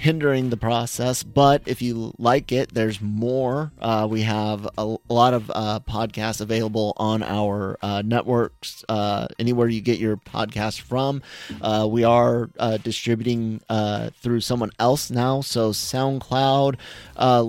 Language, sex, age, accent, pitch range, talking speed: English, male, 30-49, American, 105-125 Hz, 150 wpm